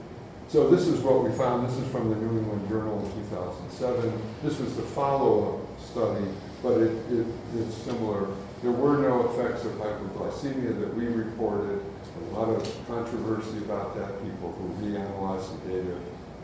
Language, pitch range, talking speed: English, 100-120 Hz, 165 wpm